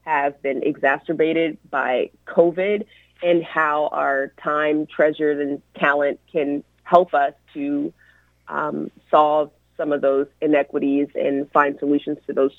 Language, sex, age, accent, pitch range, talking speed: English, female, 30-49, American, 140-165 Hz, 130 wpm